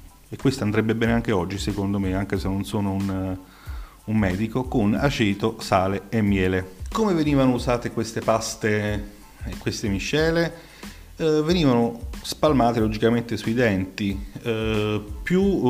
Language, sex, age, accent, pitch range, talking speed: Italian, male, 30-49, native, 100-120 Hz, 130 wpm